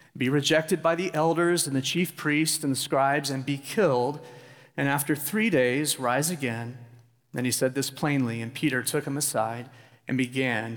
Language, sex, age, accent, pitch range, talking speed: English, male, 40-59, American, 130-170 Hz, 185 wpm